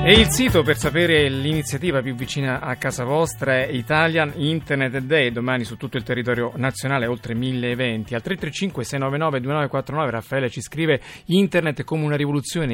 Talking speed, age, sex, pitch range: 165 wpm, 40-59, male, 115-145 Hz